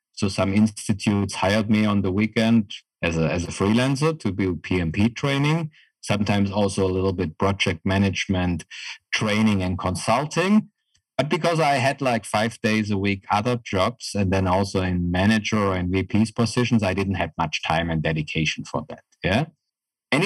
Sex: male